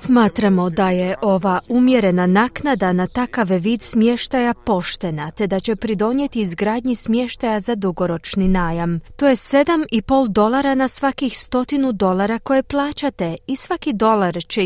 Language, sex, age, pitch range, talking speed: Croatian, female, 30-49, 190-260 Hz, 140 wpm